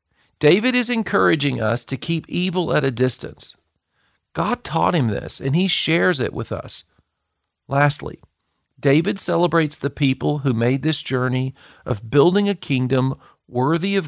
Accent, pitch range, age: American, 115-150 Hz, 40-59